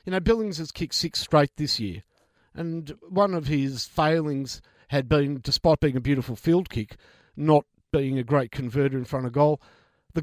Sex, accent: male, Australian